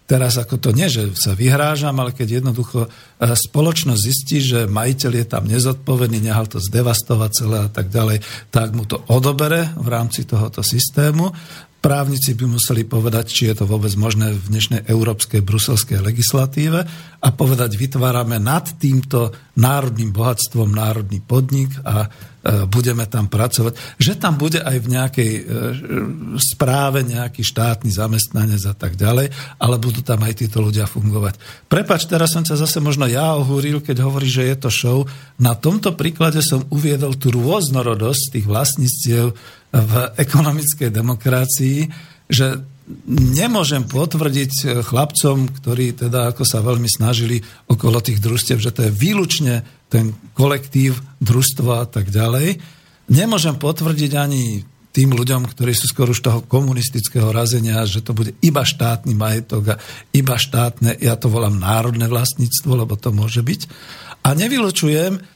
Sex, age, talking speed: male, 50-69, 145 wpm